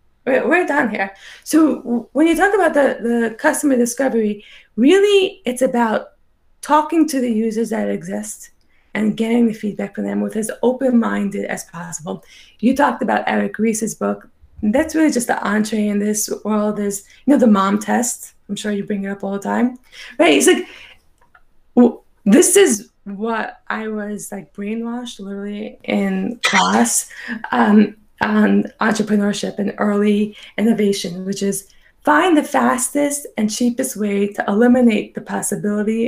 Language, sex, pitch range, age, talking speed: English, female, 205-260 Hz, 20-39, 160 wpm